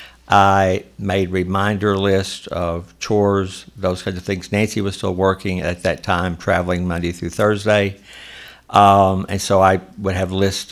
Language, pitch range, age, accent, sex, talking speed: English, 90-100 Hz, 60-79, American, male, 155 wpm